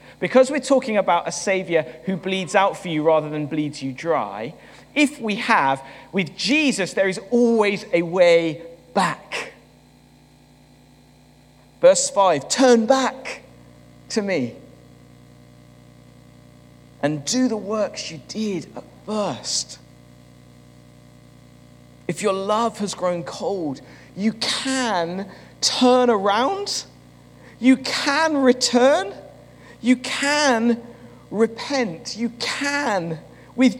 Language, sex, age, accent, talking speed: English, male, 40-59, British, 105 wpm